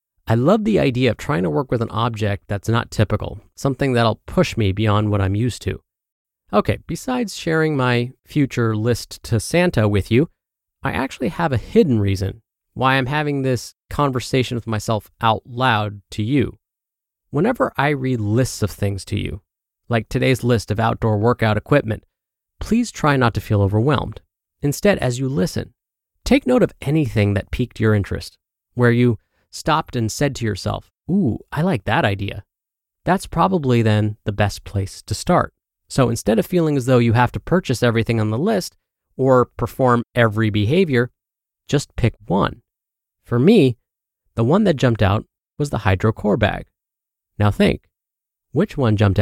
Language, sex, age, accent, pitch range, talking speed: English, male, 30-49, American, 105-135 Hz, 170 wpm